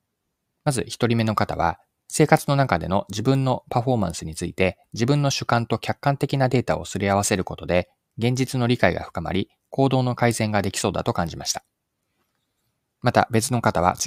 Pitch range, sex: 95-130 Hz, male